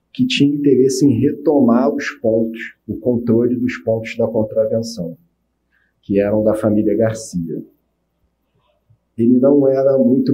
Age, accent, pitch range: 40-59, Brazilian, 115-140 Hz